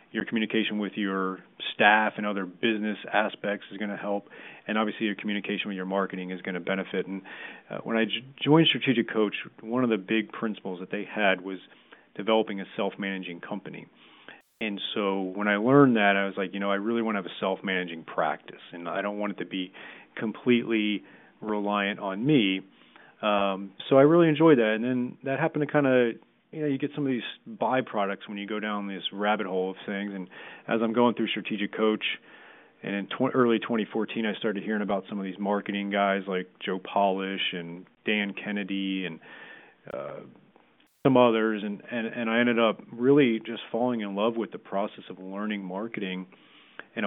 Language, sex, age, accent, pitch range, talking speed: English, male, 30-49, American, 95-115 Hz, 195 wpm